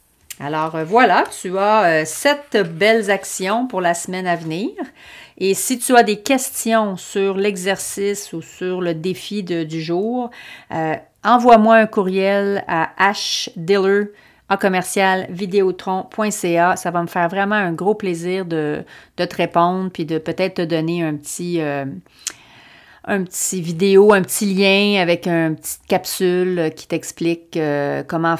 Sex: female